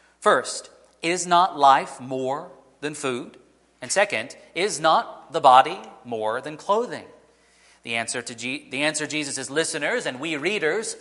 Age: 40-59